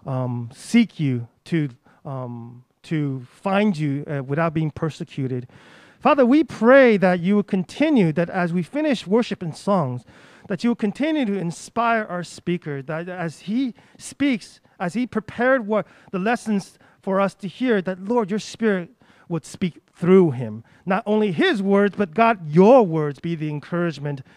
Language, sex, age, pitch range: Chinese, male, 40-59, 155-215 Hz